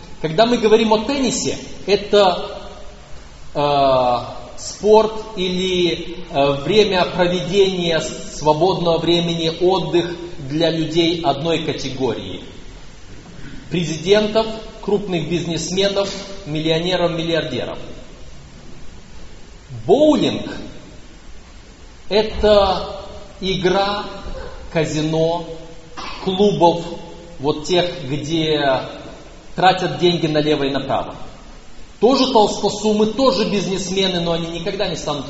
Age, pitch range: 30-49, 140-190 Hz